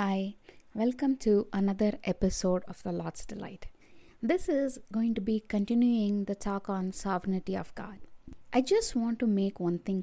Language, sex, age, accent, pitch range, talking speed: English, female, 20-39, Indian, 185-230 Hz, 170 wpm